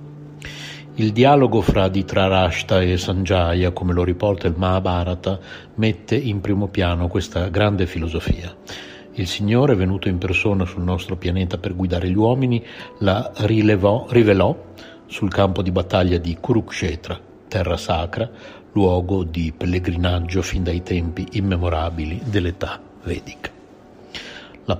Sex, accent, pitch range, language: male, native, 90-110 Hz, Italian